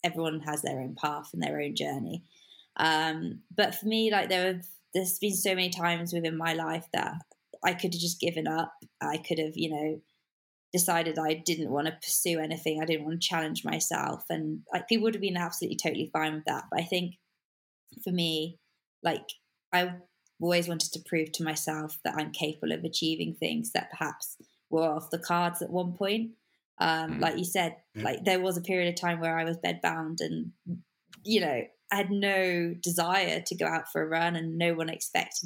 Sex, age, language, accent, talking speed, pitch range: female, 20-39, English, British, 205 wpm, 155-180 Hz